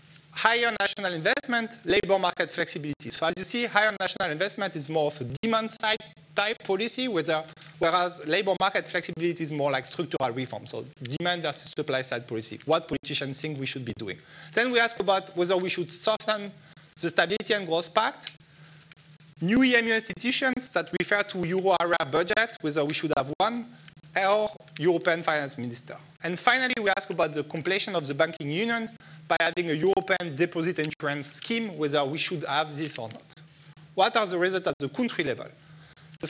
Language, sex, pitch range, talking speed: English, male, 155-205 Hz, 175 wpm